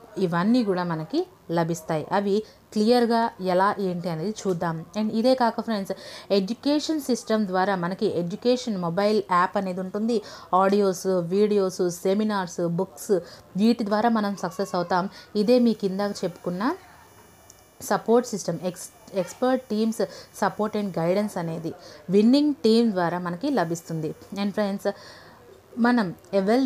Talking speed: 120 wpm